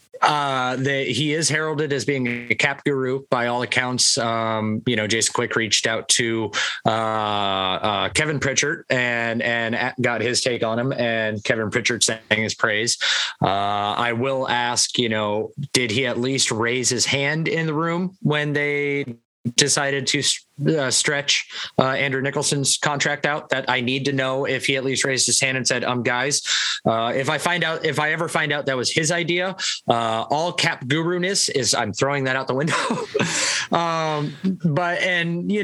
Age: 20-39